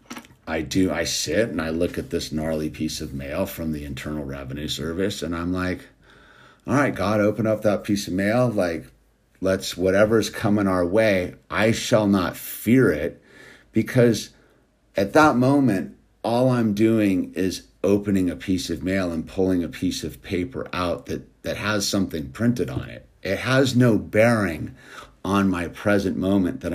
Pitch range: 85-110 Hz